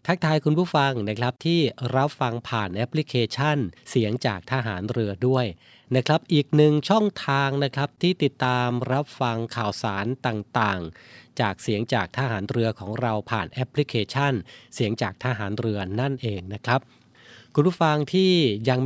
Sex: male